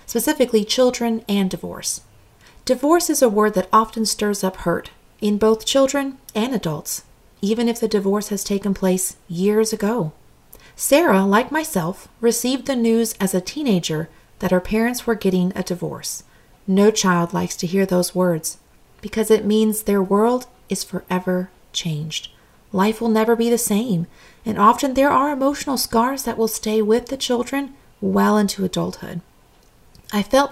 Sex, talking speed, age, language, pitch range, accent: female, 160 wpm, 40-59, English, 185-245 Hz, American